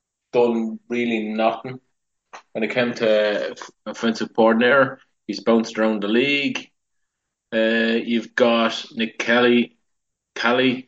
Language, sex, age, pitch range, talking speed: English, male, 20-39, 110-125 Hz, 105 wpm